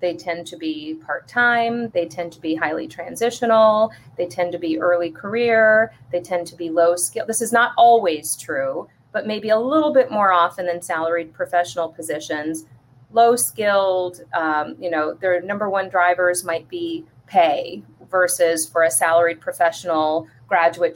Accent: American